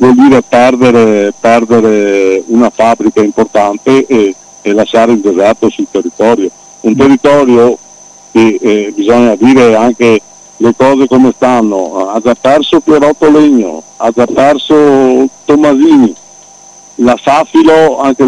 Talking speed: 120 wpm